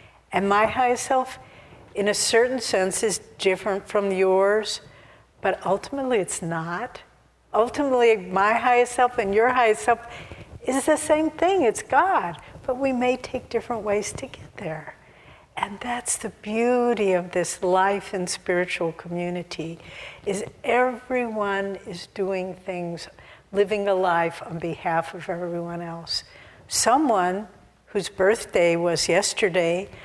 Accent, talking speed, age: American, 135 wpm, 60-79